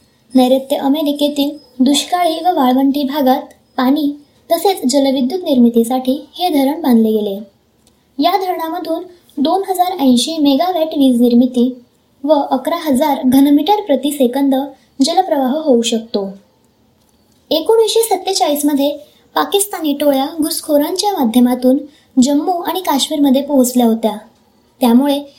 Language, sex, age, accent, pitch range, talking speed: Marathi, male, 20-39, native, 255-320 Hz, 95 wpm